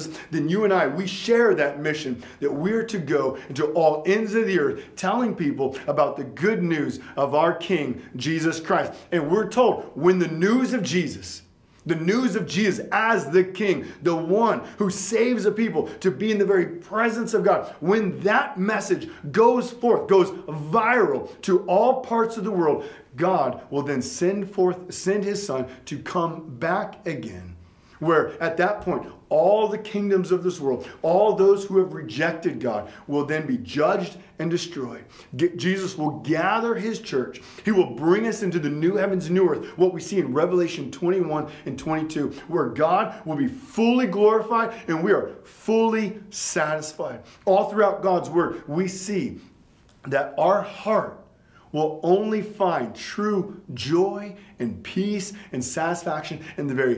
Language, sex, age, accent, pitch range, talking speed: English, male, 40-59, American, 155-210 Hz, 170 wpm